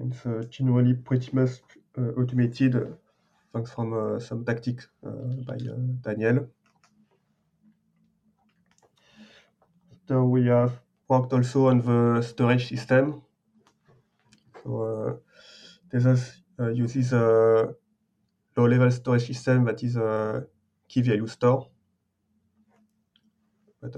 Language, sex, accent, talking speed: English, male, French, 105 wpm